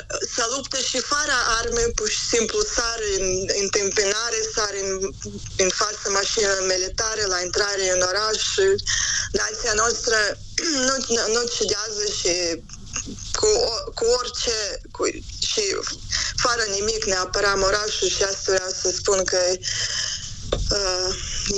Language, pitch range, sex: Romanian, 190-270 Hz, female